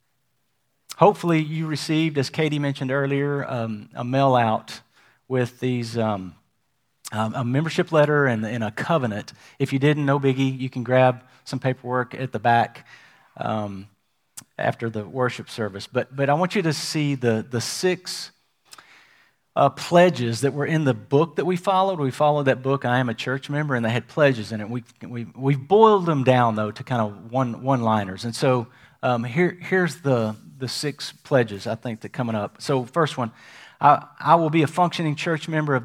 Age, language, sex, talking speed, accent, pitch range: 40-59, English, male, 190 wpm, American, 120-150 Hz